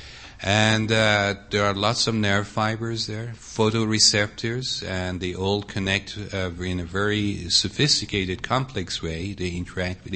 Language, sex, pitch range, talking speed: English, male, 95-115 Hz, 140 wpm